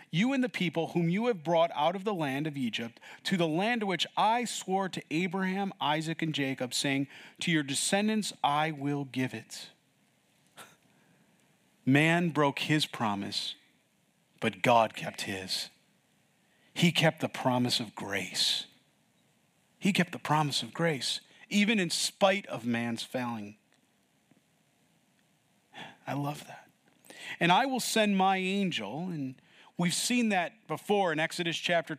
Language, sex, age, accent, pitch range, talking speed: English, male, 40-59, American, 150-195 Hz, 145 wpm